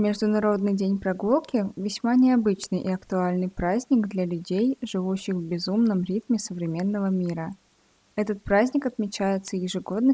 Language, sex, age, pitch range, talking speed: Russian, female, 20-39, 185-225 Hz, 120 wpm